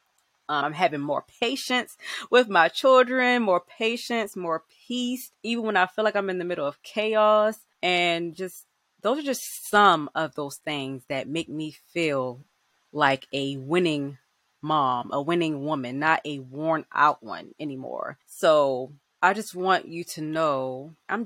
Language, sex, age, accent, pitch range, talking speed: English, female, 20-39, American, 155-215 Hz, 160 wpm